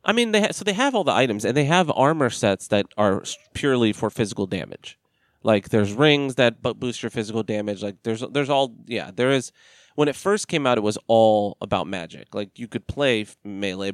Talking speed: 225 wpm